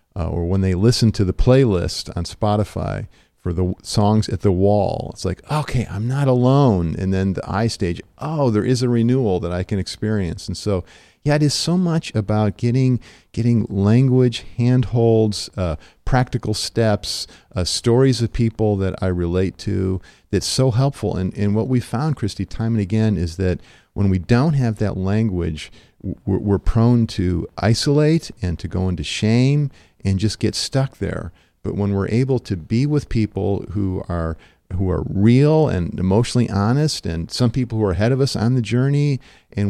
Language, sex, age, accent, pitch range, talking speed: English, male, 50-69, American, 95-125 Hz, 185 wpm